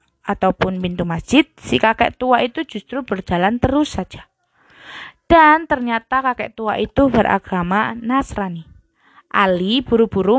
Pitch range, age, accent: 200-275 Hz, 20-39, native